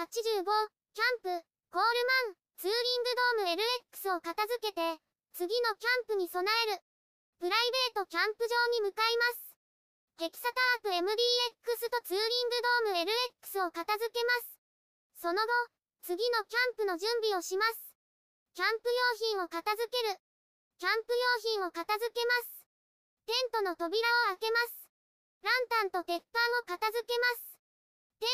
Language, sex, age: Japanese, male, 20-39